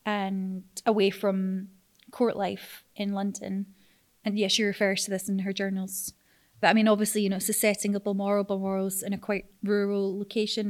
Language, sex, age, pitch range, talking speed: English, female, 20-39, 190-210 Hz, 185 wpm